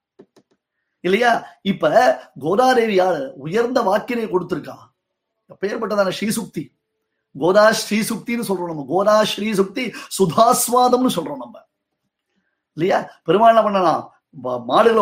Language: Tamil